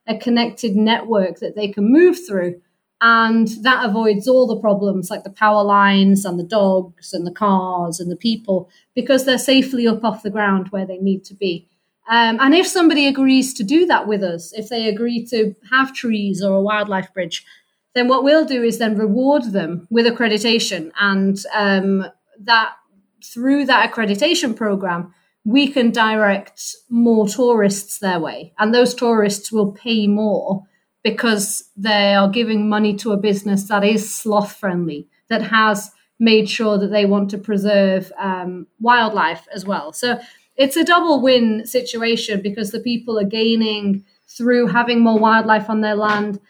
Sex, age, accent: female, 30-49, British